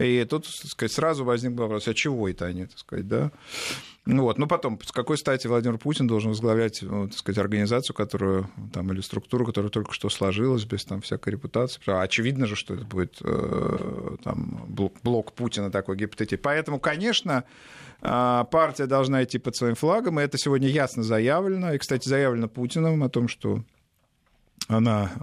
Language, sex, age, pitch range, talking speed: Russian, male, 50-69, 105-135 Hz, 170 wpm